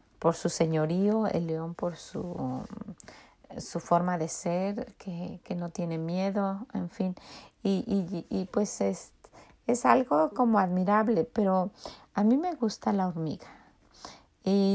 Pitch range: 180-235 Hz